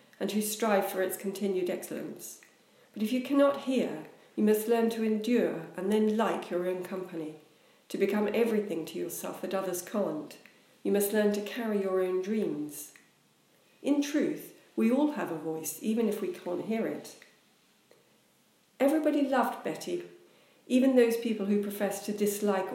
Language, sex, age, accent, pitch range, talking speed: English, female, 50-69, British, 185-225 Hz, 165 wpm